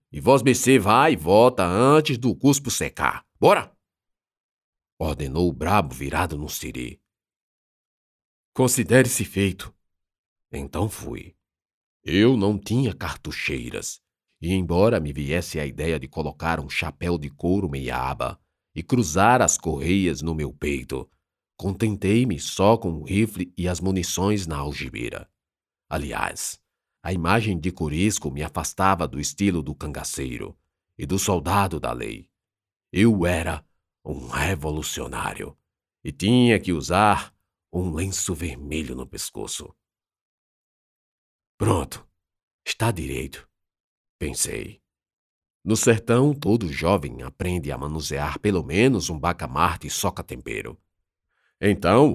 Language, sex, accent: Portuguese, male, Brazilian